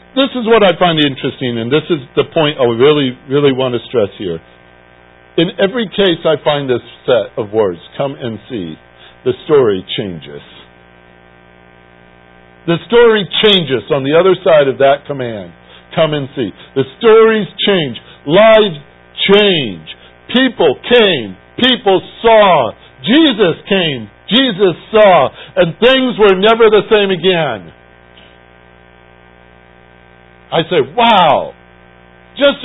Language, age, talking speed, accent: English, 60-79, 130 wpm, American